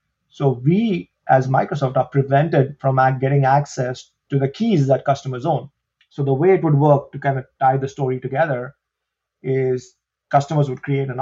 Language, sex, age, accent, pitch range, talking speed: English, male, 30-49, Indian, 135-155 Hz, 175 wpm